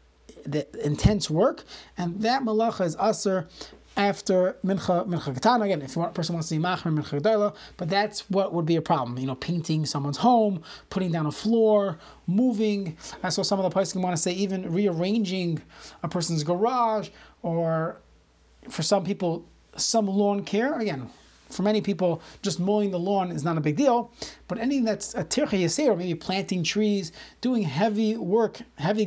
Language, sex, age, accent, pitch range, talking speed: English, male, 30-49, American, 170-210 Hz, 185 wpm